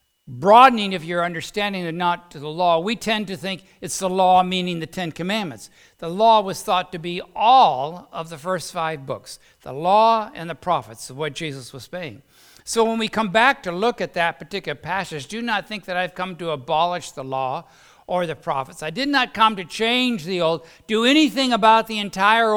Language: English